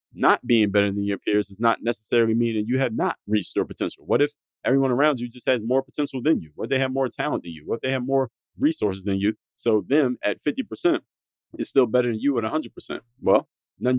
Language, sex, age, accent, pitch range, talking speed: English, male, 30-49, American, 110-135 Hz, 245 wpm